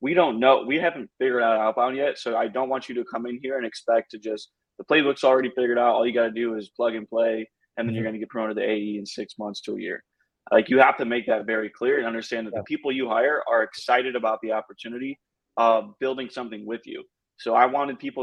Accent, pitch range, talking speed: American, 110-120 Hz, 265 wpm